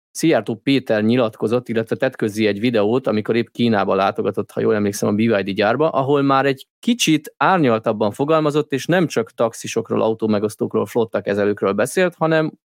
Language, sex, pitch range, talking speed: Hungarian, male, 105-150 Hz, 145 wpm